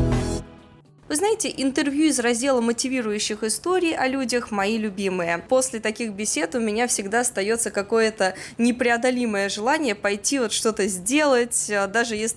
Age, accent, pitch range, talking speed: 20-39, native, 200-260 Hz, 130 wpm